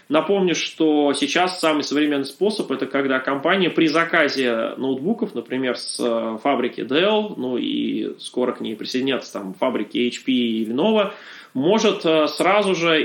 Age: 20-39